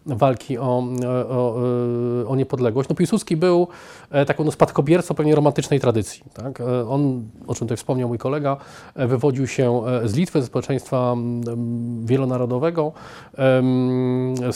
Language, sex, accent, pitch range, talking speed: Polish, male, native, 120-145 Hz, 120 wpm